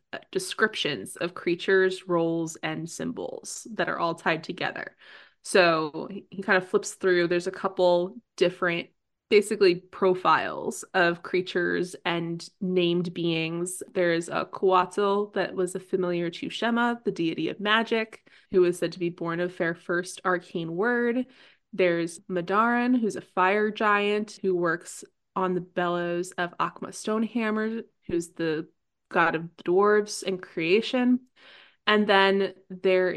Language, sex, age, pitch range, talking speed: English, female, 20-39, 175-205 Hz, 140 wpm